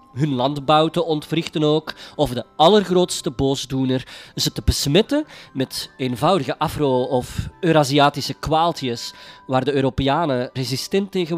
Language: Dutch